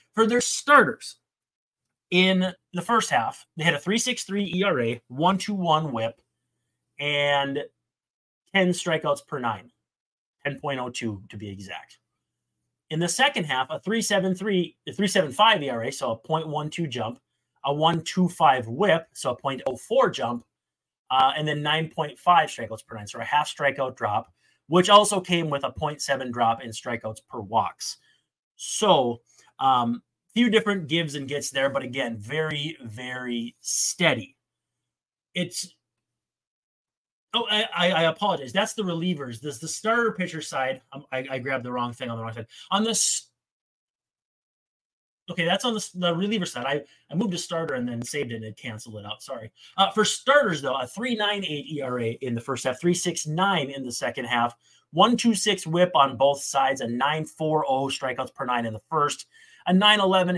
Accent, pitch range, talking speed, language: American, 130-195 Hz, 160 wpm, English